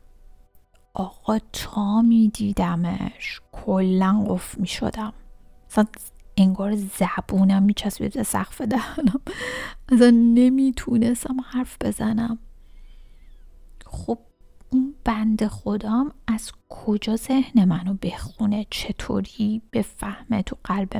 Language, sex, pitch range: Persian, female, 175-235 Hz